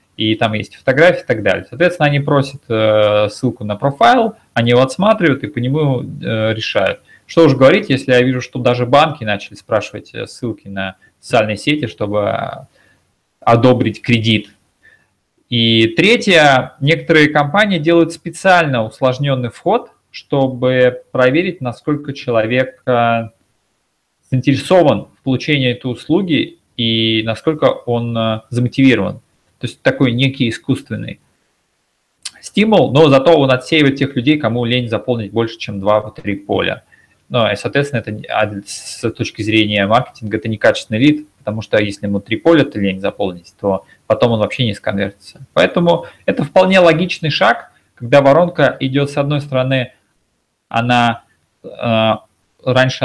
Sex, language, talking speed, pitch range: male, Russian, 140 wpm, 110-145 Hz